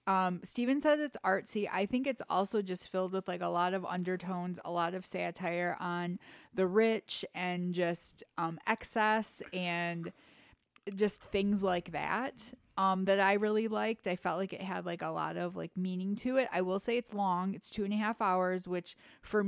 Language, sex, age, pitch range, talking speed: English, female, 20-39, 180-215 Hz, 195 wpm